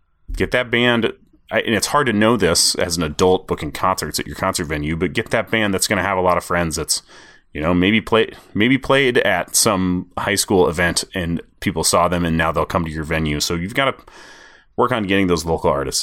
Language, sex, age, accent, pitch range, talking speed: English, male, 30-49, American, 85-110 Hz, 235 wpm